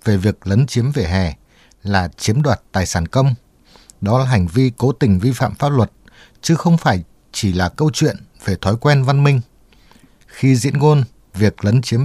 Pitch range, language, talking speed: 100-135 Hz, Vietnamese, 200 wpm